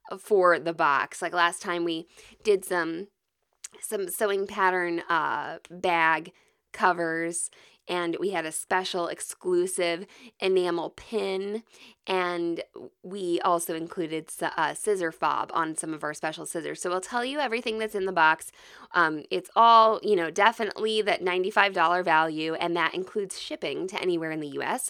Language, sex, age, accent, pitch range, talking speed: English, female, 20-39, American, 175-260 Hz, 155 wpm